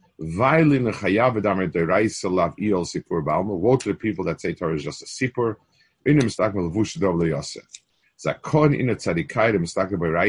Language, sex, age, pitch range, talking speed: English, male, 50-69, 90-125 Hz, 65 wpm